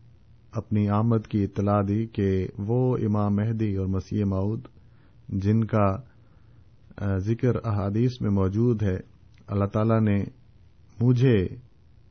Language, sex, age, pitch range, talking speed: Urdu, male, 50-69, 100-120 Hz, 115 wpm